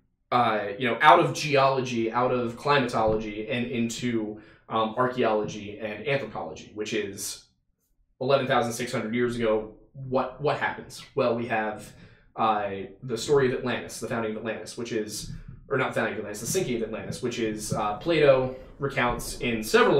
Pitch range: 110-135 Hz